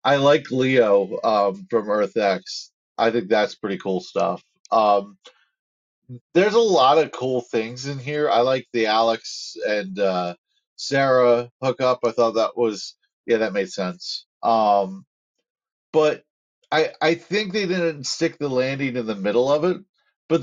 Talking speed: 155 wpm